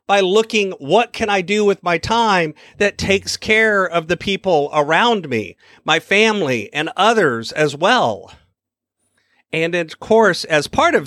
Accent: American